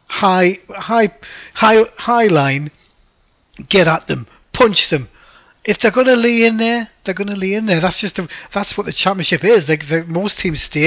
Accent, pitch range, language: British, 155-195 Hz, English